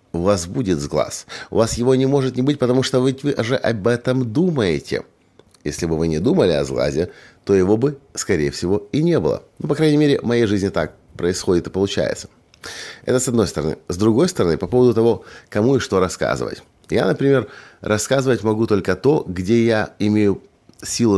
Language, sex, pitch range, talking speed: Russian, male, 90-120 Hz, 195 wpm